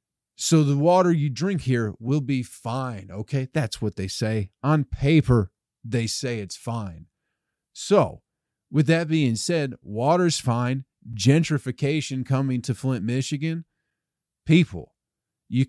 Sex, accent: male, American